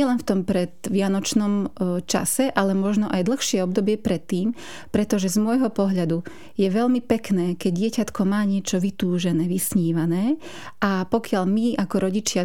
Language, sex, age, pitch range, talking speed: Slovak, female, 30-49, 185-215 Hz, 150 wpm